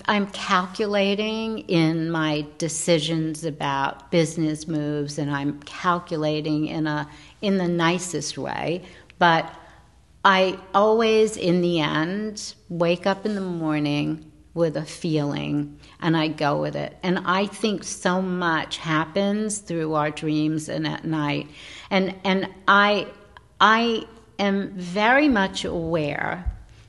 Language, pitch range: English, 155-195 Hz